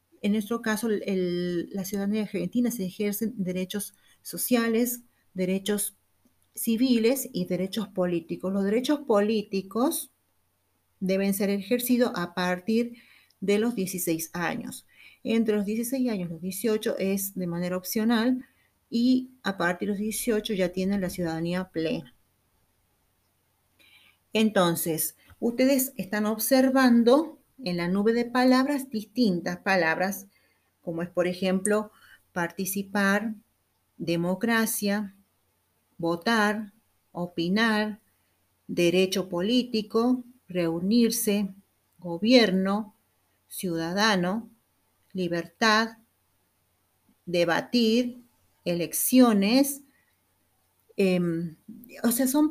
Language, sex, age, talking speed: Spanish, female, 40-59, 90 wpm